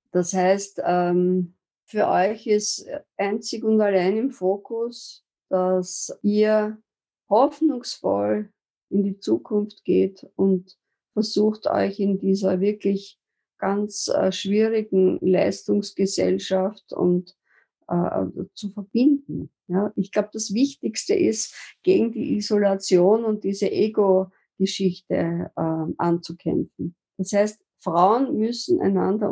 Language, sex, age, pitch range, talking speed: German, female, 50-69, 180-210 Hz, 95 wpm